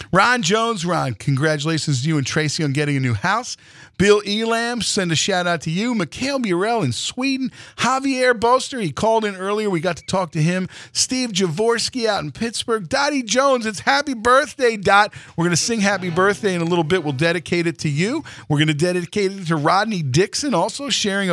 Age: 50-69